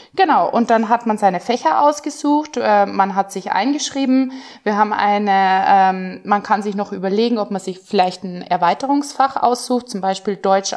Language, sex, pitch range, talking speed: German, female, 195-250 Hz, 165 wpm